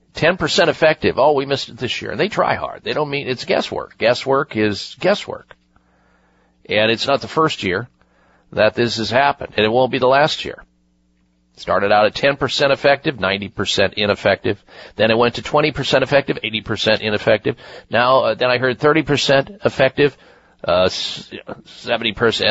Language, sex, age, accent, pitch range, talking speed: English, male, 50-69, American, 105-160 Hz, 165 wpm